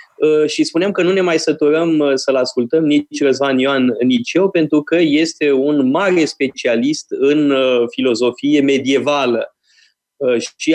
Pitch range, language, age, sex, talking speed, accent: 120-150 Hz, Romanian, 20-39, male, 135 wpm, native